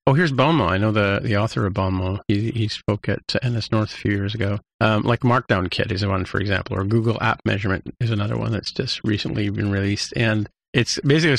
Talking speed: 225 wpm